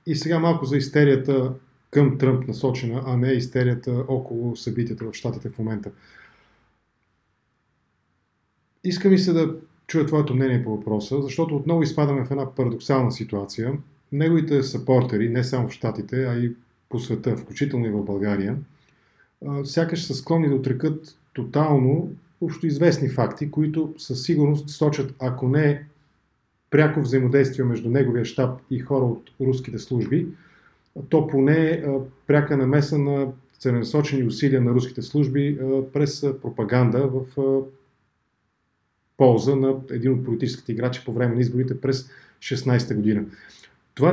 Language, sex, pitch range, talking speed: English, male, 125-145 Hz, 135 wpm